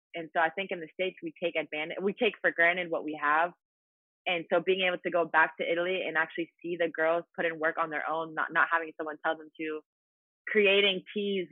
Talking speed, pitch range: 240 wpm, 155-180 Hz